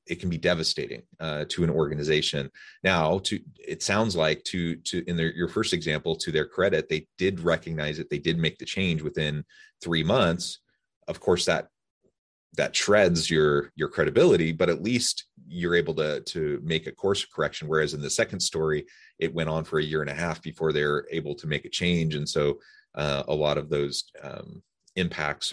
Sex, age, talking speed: male, 30-49, 195 wpm